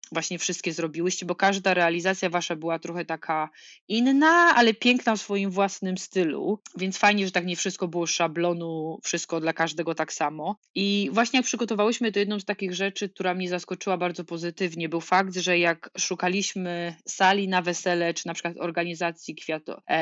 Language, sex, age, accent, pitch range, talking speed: Polish, female, 20-39, native, 170-200 Hz, 170 wpm